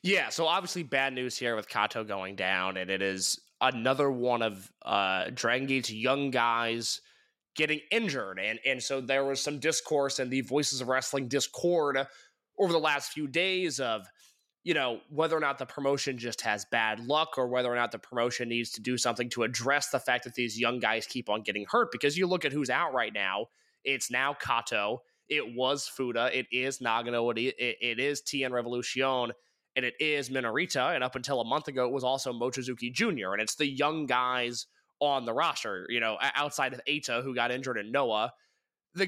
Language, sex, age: English, male, 20-39